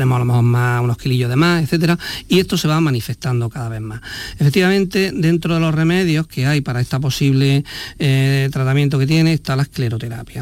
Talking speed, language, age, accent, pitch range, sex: 200 wpm, Spanish, 50-69, Spanish, 130-165 Hz, male